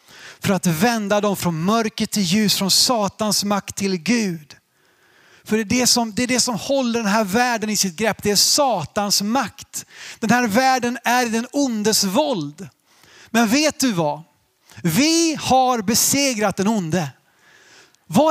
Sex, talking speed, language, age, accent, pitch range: male, 165 wpm, Swedish, 30-49, native, 190-270 Hz